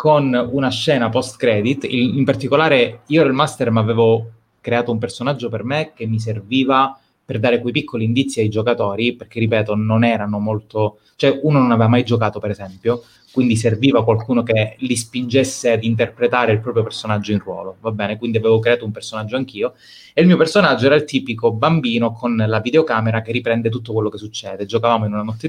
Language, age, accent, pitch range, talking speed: Italian, 20-39, native, 110-140 Hz, 195 wpm